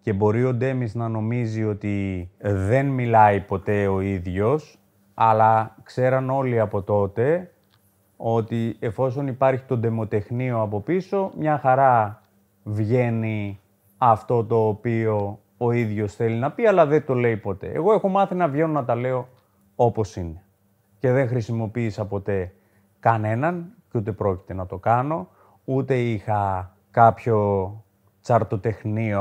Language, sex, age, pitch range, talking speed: Greek, male, 30-49, 100-125 Hz, 135 wpm